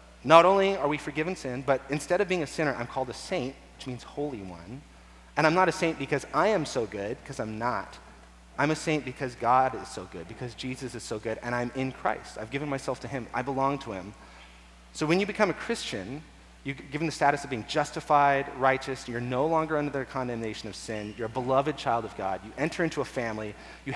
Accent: American